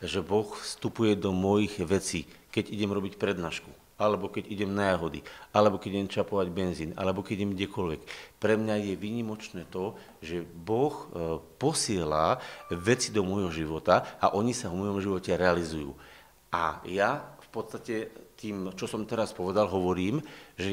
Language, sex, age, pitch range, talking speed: Slovak, male, 50-69, 95-140 Hz, 155 wpm